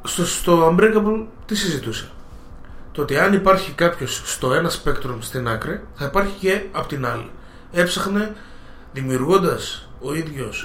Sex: male